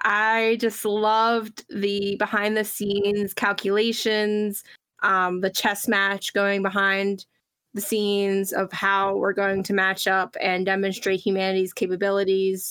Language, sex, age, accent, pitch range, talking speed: English, female, 20-39, American, 190-220 Hz, 125 wpm